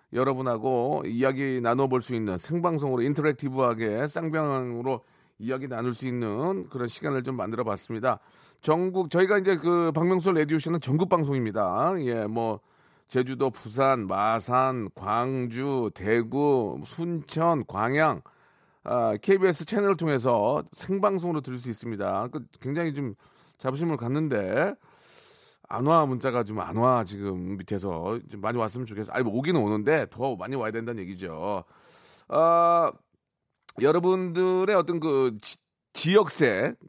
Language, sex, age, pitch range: Korean, male, 40-59, 120-165 Hz